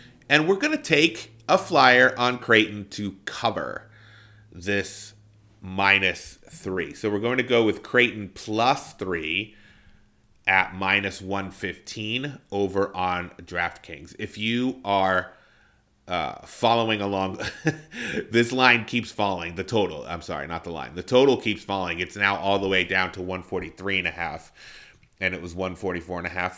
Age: 30-49